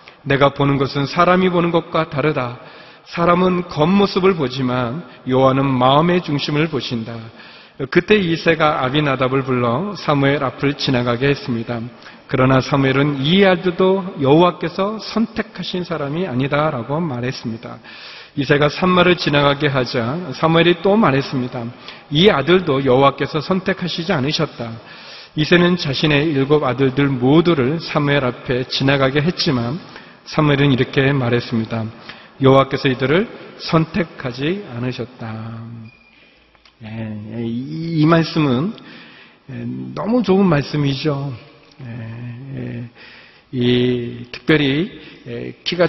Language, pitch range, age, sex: Korean, 125-170 Hz, 40-59, male